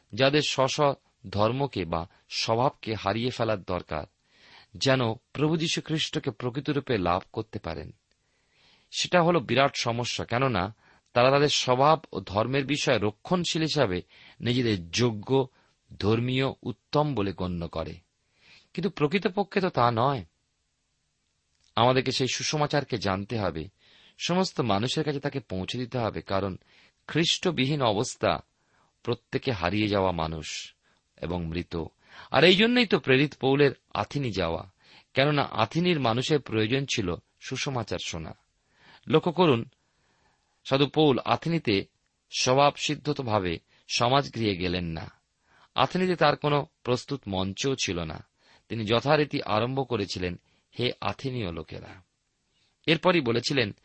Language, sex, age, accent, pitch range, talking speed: Bengali, male, 40-59, native, 100-145 Hz, 115 wpm